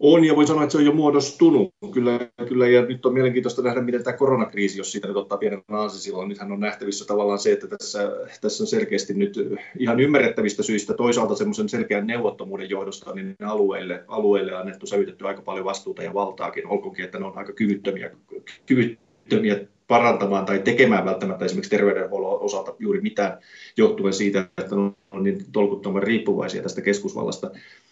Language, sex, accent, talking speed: Finnish, male, native, 175 wpm